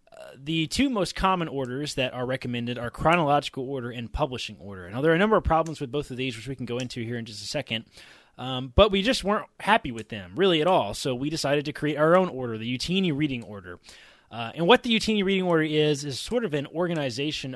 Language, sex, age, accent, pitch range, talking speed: English, male, 20-39, American, 125-170 Hz, 245 wpm